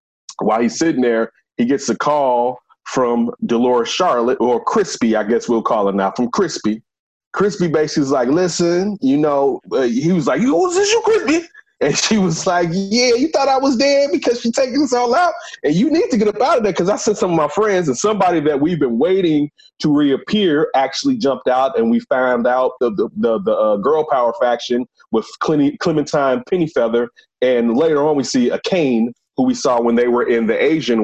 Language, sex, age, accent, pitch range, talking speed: English, male, 30-49, American, 135-210 Hz, 215 wpm